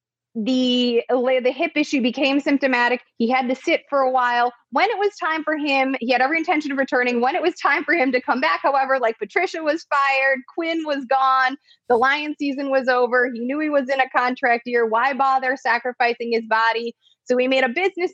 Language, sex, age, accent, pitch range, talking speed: English, female, 20-39, American, 245-310 Hz, 215 wpm